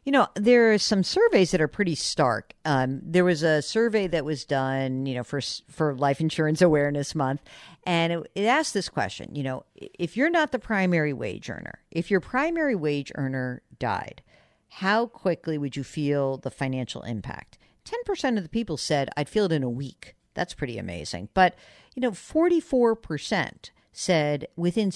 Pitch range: 150-210 Hz